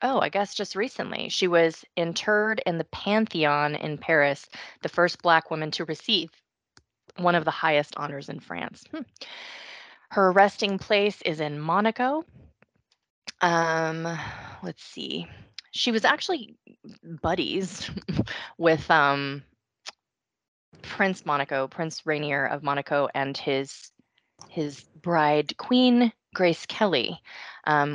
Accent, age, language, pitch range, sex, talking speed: American, 20-39, English, 145-190 Hz, female, 120 wpm